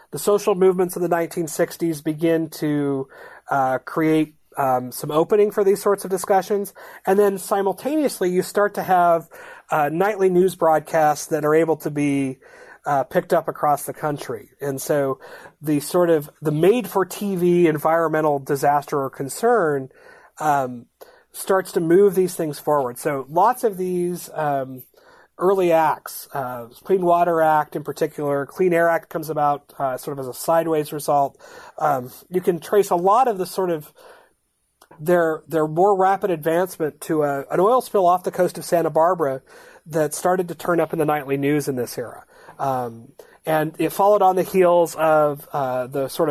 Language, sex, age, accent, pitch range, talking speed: English, male, 30-49, American, 145-185 Hz, 170 wpm